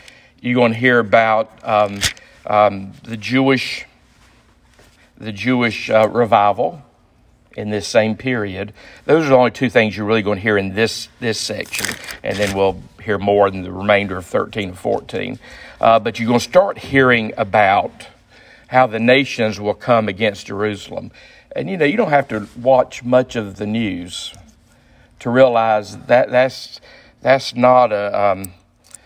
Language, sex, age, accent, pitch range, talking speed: English, male, 50-69, American, 105-120 Hz, 165 wpm